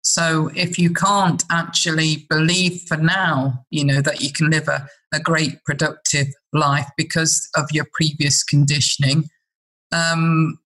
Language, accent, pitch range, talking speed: English, British, 150-180 Hz, 140 wpm